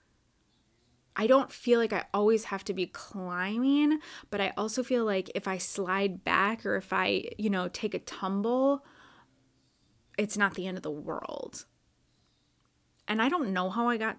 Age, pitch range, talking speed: 20-39, 180-215 Hz, 175 wpm